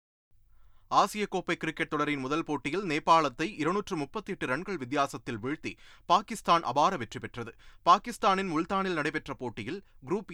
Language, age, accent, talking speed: Tamil, 30-49, native, 115 wpm